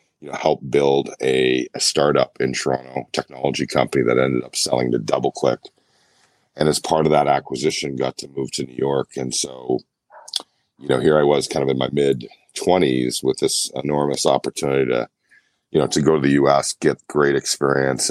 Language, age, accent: English, 40-59, American